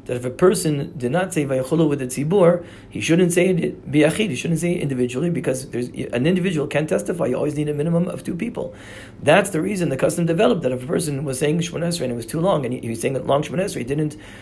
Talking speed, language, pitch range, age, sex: 255 wpm, English, 130-170 Hz, 40-59, male